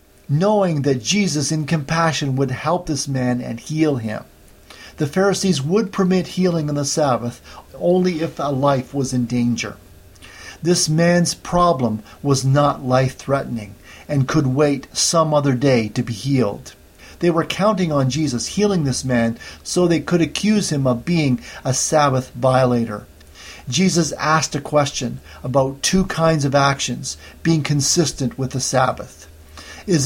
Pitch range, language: 120-160 Hz, English